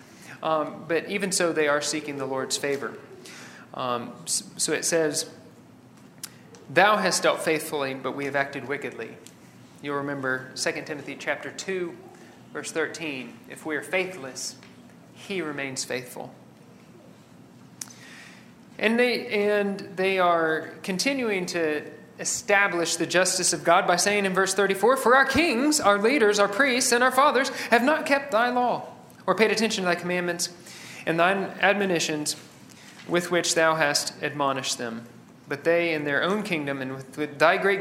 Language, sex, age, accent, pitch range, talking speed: English, male, 40-59, American, 145-195 Hz, 150 wpm